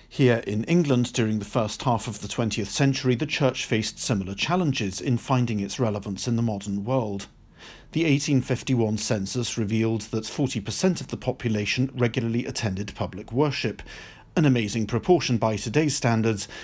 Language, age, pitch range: English, 50-69, 105-130 Hz